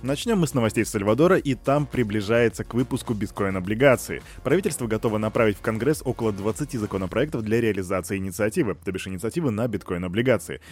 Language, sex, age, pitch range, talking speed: Russian, male, 20-39, 105-130 Hz, 150 wpm